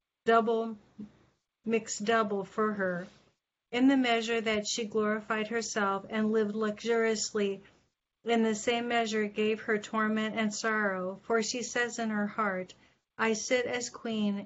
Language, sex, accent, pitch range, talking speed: English, female, American, 205-225 Hz, 140 wpm